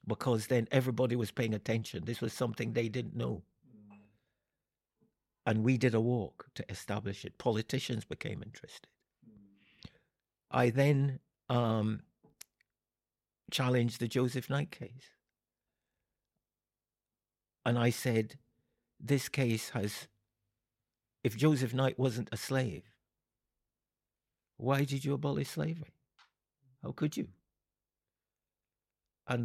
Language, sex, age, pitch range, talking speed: English, male, 60-79, 110-140 Hz, 105 wpm